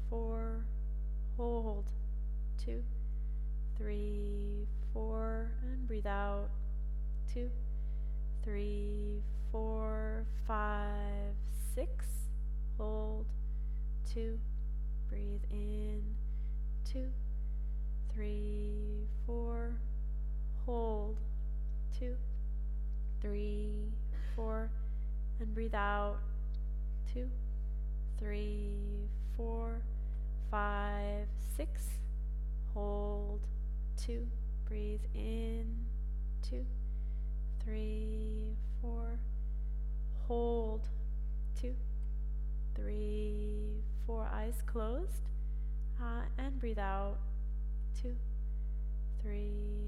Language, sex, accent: Finnish, female, American